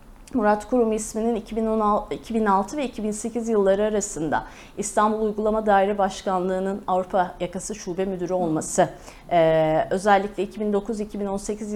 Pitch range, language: 180-215 Hz, Turkish